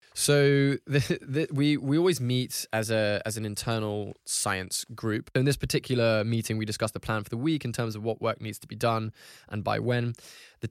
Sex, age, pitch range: male, 10-29, 110-125 Hz